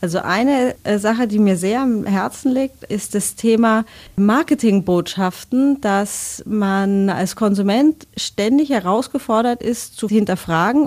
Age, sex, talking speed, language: 30-49, female, 120 wpm, German